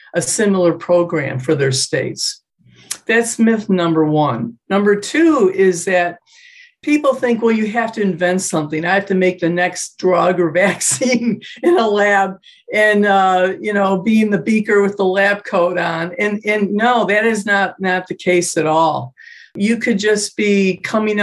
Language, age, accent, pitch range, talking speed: English, 50-69, American, 175-220 Hz, 180 wpm